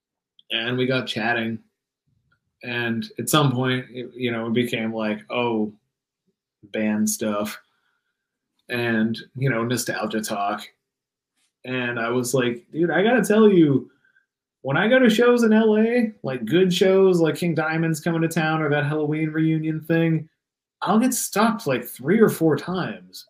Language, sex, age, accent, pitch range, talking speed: English, male, 30-49, American, 120-175 Hz, 155 wpm